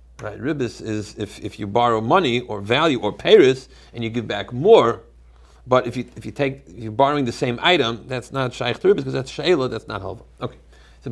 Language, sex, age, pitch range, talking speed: English, male, 40-59, 105-135 Hz, 220 wpm